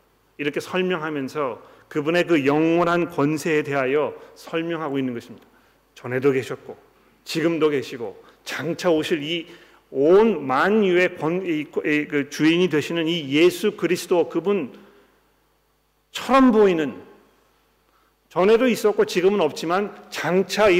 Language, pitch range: Korean, 150-190 Hz